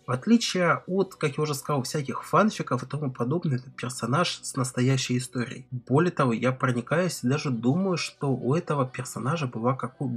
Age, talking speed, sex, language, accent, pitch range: 20-39, 175 wpm, male, Russian, native, 125-170 Hz